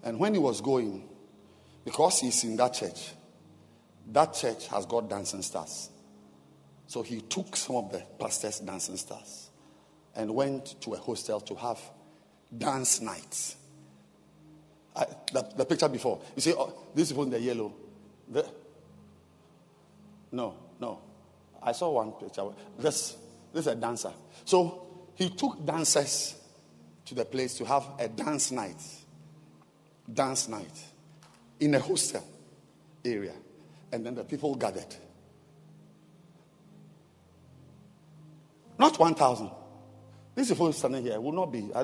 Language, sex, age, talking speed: English, male, 50-69, 130 wpm